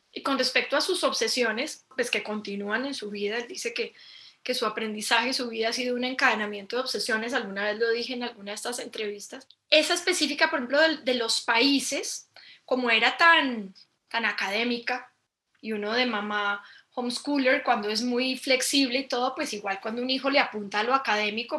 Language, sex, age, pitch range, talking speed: Spanish, female, 10-29, 225-275 Hz, 190 wpm